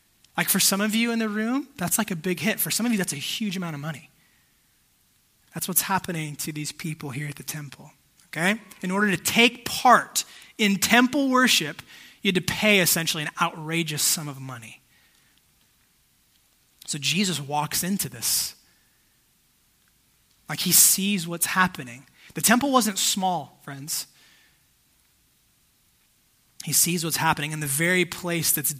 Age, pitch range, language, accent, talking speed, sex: 20-39, 150-190 Hz, English, American, 160 wpm, male